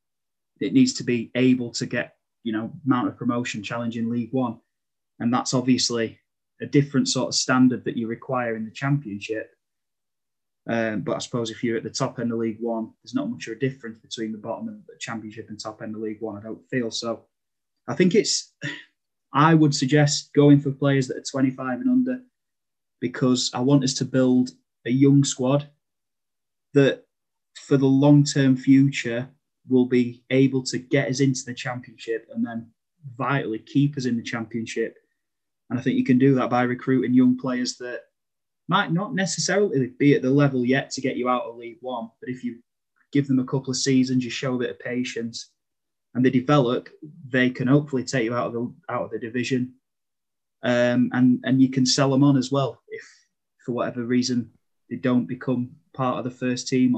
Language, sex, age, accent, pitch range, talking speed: English, male, 20-39, British, 120-140 Hz, 200 wpm